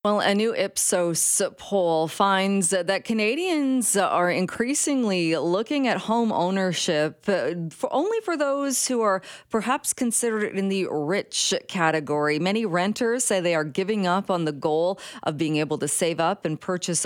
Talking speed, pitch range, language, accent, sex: 150 wpm, 160-225 Hz, English, American, female